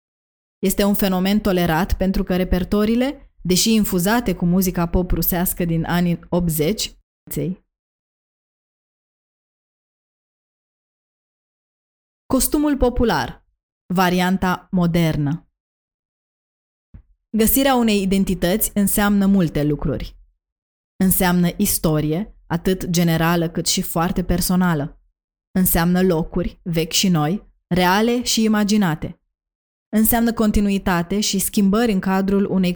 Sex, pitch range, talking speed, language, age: female, 170-205 Hz, 90 wpm, Romanian, 20-39